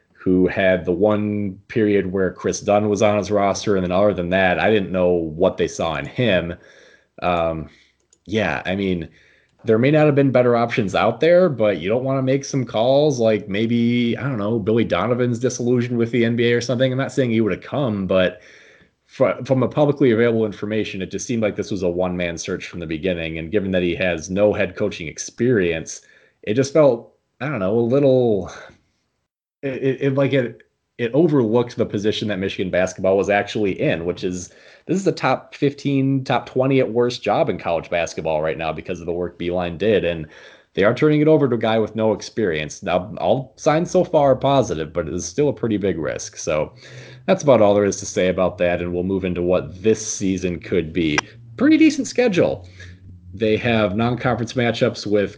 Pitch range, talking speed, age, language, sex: 95-125 Hz, 210 wpm, 30-49, English, male